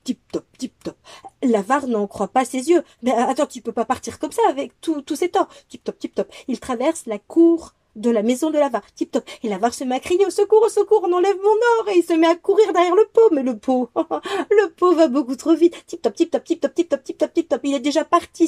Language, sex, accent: French, female, French